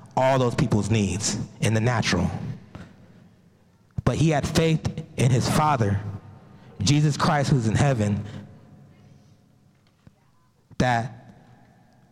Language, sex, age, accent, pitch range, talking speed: English, male, 20-39, American, 120-165 Hz, 100 wpm